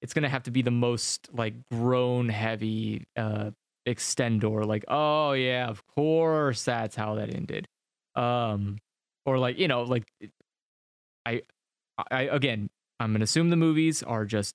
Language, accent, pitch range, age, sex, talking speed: English, American, 115-160 Hz, 20-39, male, 155 wpm